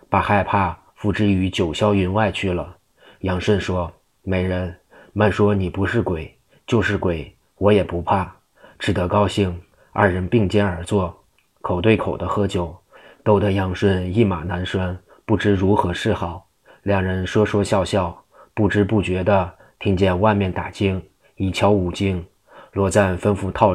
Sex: male